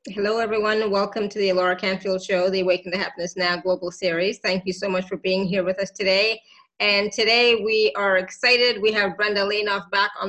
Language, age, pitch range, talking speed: English, 20-39, 195-230 Hz, 210 wpm